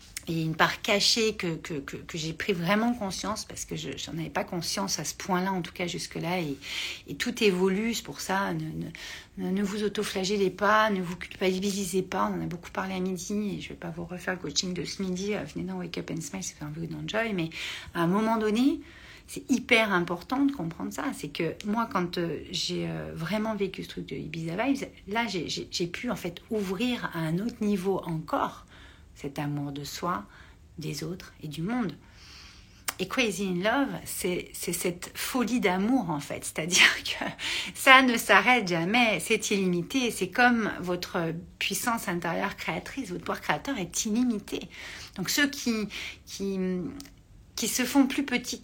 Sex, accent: female, French